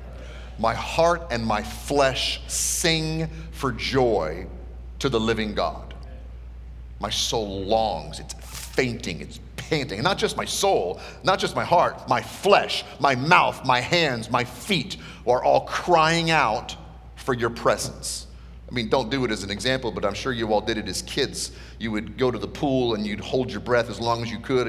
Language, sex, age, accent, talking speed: English, male, 40-59, American, 185 wpm